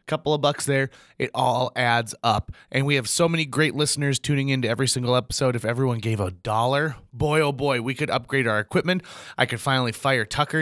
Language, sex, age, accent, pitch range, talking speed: English, male, 30-49, American, 110-150 Hz, 215 wpm